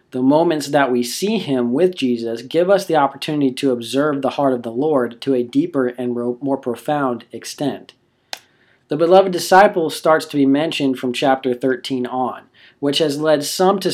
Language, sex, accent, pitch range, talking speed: English, male, American, 125-145 Hz, 180 wpm